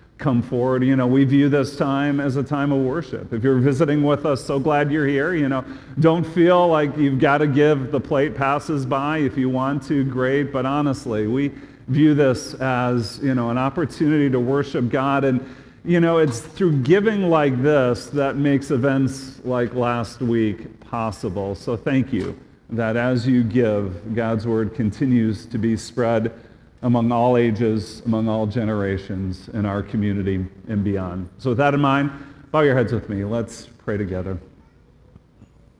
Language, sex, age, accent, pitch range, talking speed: English, male, 40-59, American, 115-140 Hz, 175 wpm